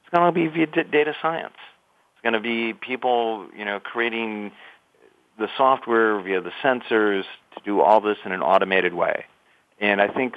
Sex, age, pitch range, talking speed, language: male, 40-59, 105-125 Hz, 180 wpm, English